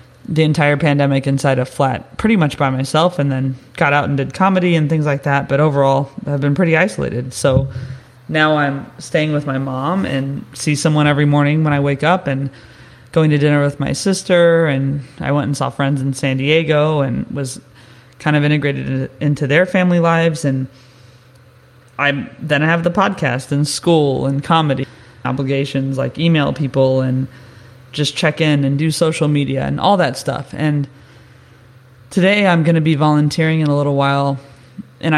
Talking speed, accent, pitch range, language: 185 wpm, American, 135-150 Hz, English